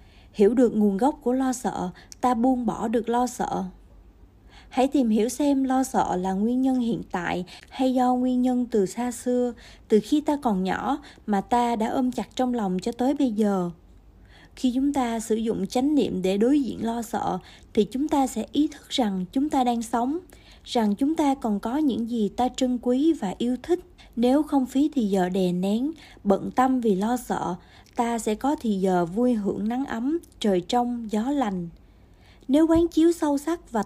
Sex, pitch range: female, 200-265 Hz